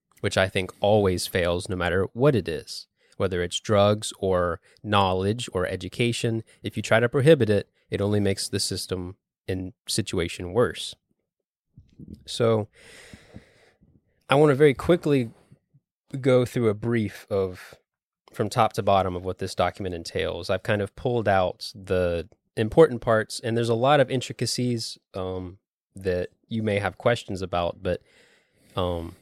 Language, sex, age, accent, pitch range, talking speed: English, male, 20-39, American, 90-110 Hz, 150 wpm